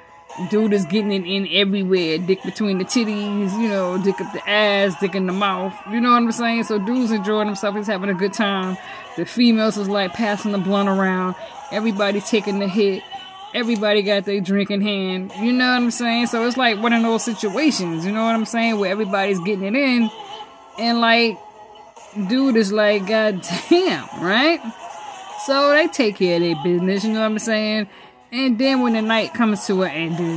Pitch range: 190-225 Hz